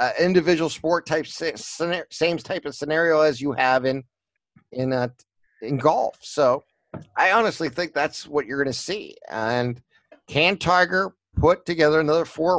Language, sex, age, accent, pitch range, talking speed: English, male, 50-69, American, 130-160 Hz, 155 wpm